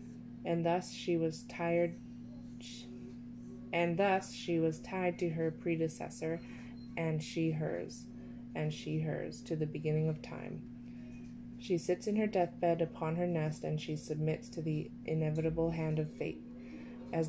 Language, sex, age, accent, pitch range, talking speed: English, female, 20-39, American, 120-175 Hz, 145 wpm